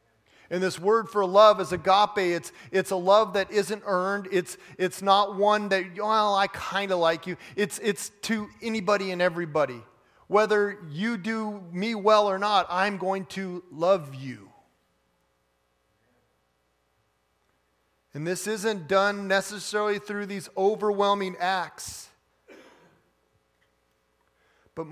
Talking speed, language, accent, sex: 130 wpm, English, American, male